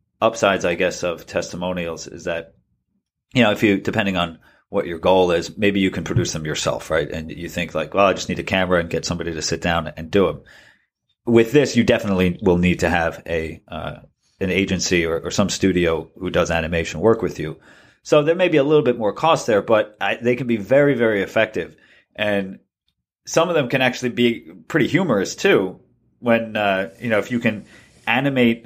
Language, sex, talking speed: English, male, 210 wpm